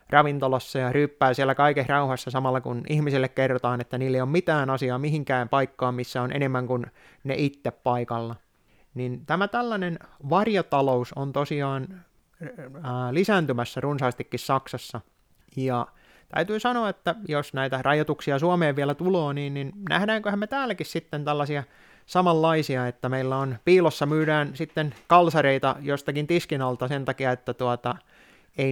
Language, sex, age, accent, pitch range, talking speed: Finnish, male, 30-49, native, 130-160 Hz, 140 wpm